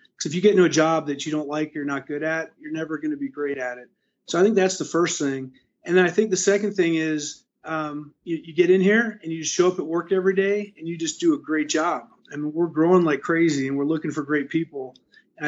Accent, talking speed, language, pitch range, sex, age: American, 285 wpm, English, 145-175 Hz, male, 30-49